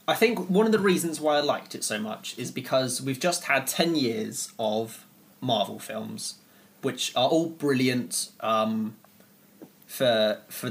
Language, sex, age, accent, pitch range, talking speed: English, male, 20-39, British, 110-145 Hz, 165 wpm